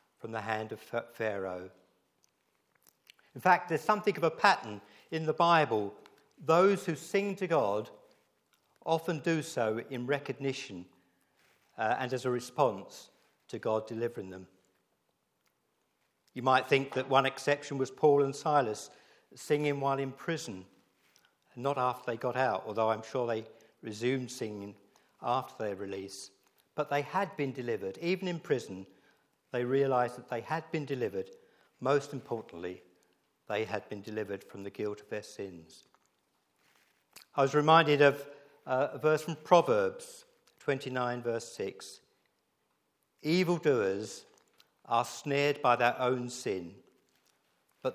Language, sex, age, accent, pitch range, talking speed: English, male, 50-69, British, 110-155 Hz, 135 wpm